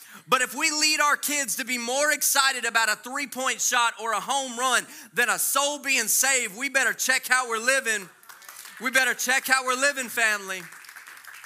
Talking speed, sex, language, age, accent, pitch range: 190 wpm, male, English, 30-49, American, 225-270 Hz